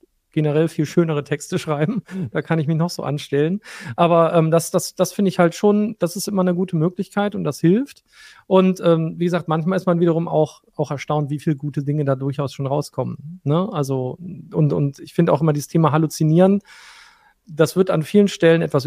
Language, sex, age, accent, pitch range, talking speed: German, male, 40-59, German, 155-185 Hz, 210 wpm